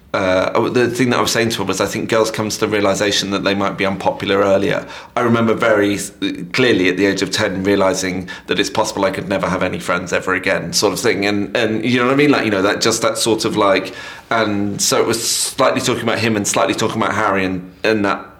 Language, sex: English, male